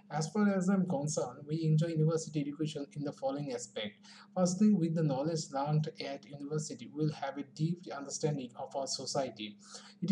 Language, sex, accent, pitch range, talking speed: English, male, Indian, 150-185 Hz, 185 wpm